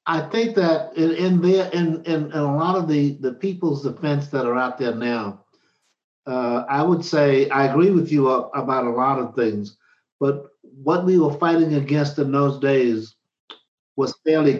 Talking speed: 185 wpm